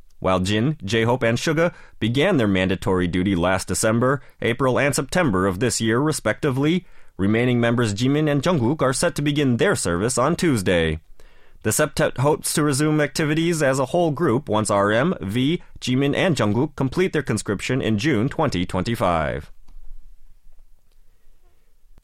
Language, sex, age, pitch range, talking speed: English, male, 30-49, 105-150 Hz, 145 wpm